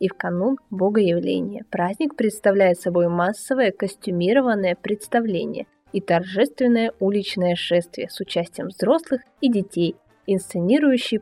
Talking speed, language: 105 wpm, Russian